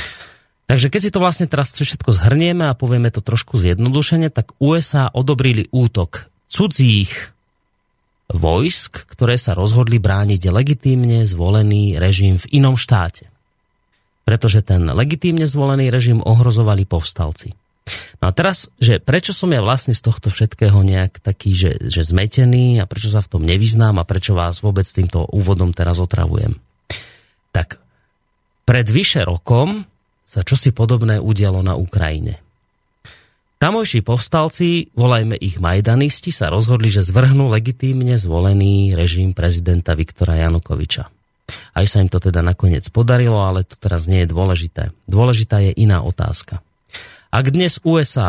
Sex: male